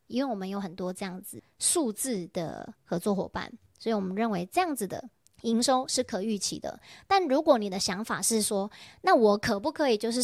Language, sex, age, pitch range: Chinese, male, 30-49, 195-250 Hz